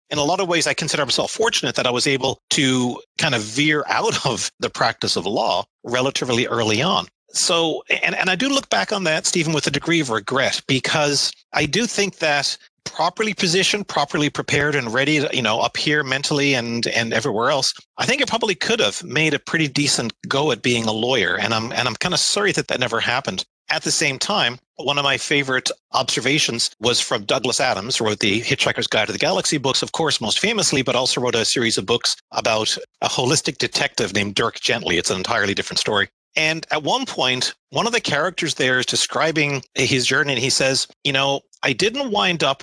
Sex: male